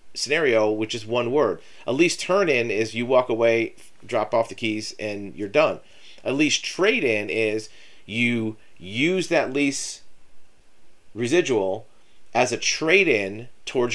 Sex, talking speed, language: male, 140 wpm, English